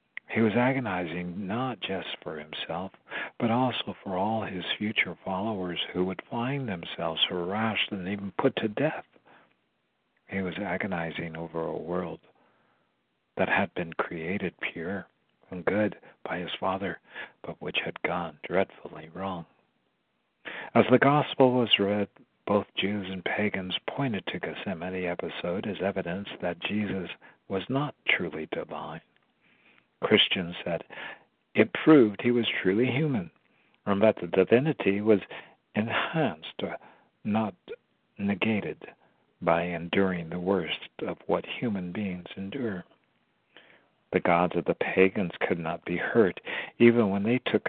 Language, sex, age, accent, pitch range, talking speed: English, male, 60-79, American, 90-110 Hz, 130 wpm